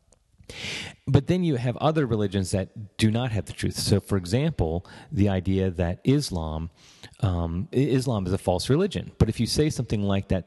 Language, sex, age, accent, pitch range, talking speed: English, male, 30-49, American, 90-120 Hz, 185 wpm